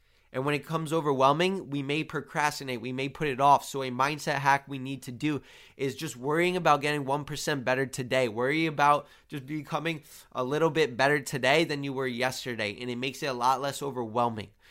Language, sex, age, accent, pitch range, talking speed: English, male, 20-39, American, 125-155 Hz, 205 wpm